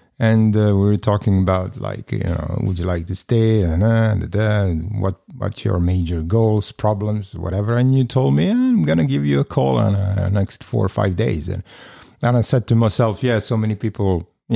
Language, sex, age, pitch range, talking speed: Dutch, male, 50-69, 100-125 Hz, 225 wpm